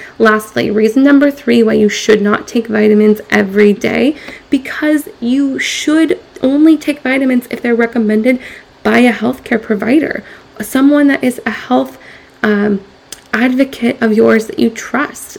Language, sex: English, female